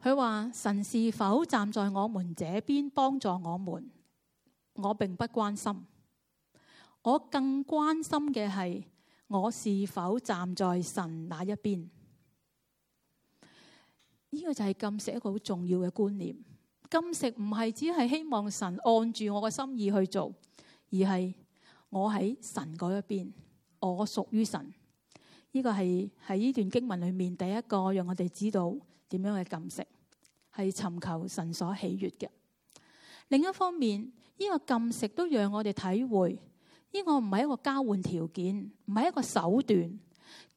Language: Chinese